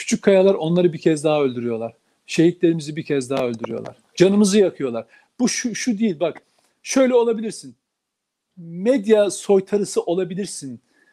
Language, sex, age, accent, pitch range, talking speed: Turkish, male, 50-69, native, 180-230 Hz, 130 wpm